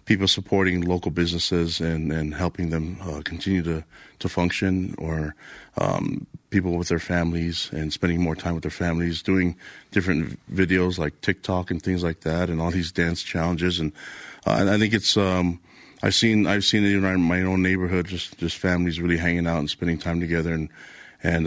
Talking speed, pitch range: 190 wpm, 85-90 Hz